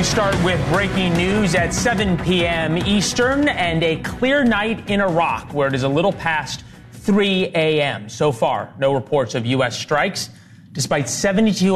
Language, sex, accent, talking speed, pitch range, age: English, male, American, 165 wpm, 130-175 Hz, 30-49